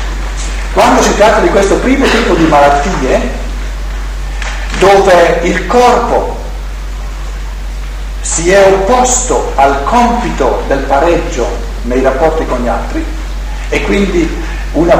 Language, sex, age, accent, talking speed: Italian, male, 50-69, native, 110 wpm